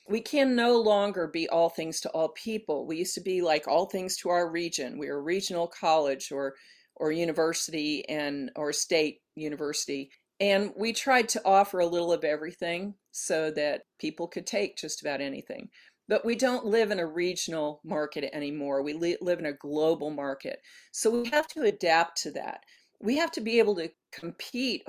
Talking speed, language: 190 wpm, English